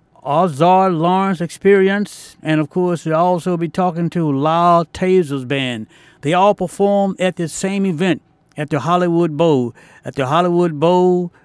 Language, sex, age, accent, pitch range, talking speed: English, male, 60-79, American, 155-185 Hz, 150 wpm